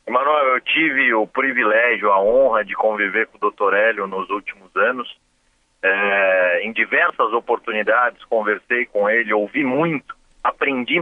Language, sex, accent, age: Portuguese, male, Brazilian, 40-59